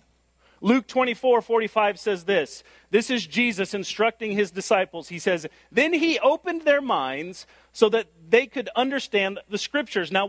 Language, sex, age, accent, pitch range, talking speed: English, male, 40-59, American, 175-260 Hz, 150 wpm